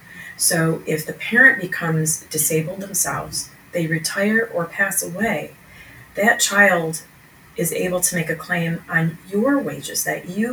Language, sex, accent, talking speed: English, female, American, 140 wpm